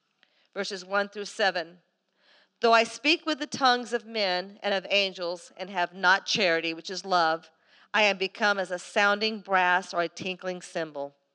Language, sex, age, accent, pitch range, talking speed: English, female, 50-69, American, 190-235 Hz, 175 wpm